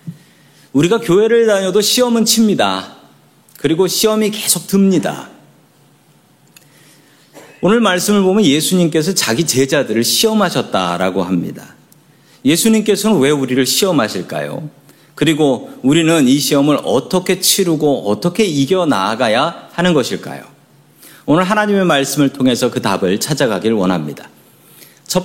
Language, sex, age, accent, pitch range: Korean, male, 40-59, native, 130-195 Hz